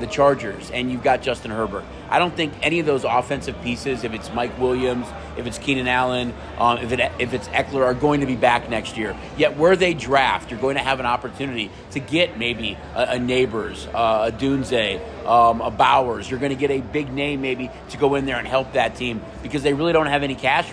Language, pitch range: English, 120-150 Hz